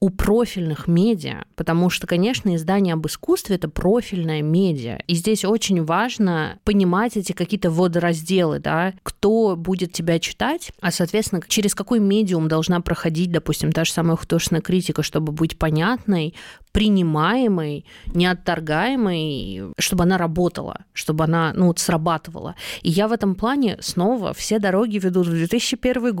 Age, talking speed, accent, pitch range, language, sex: 20-39, 140 wpm, native, 165-195 Hz, Russian, female